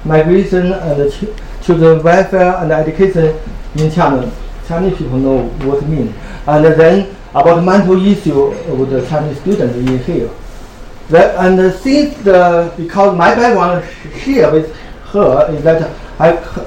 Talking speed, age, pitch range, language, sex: 150 wpm, 60-79, 150-195 Hz, English, male